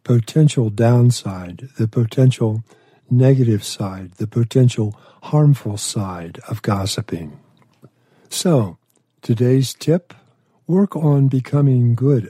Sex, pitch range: male, 110-140 Hz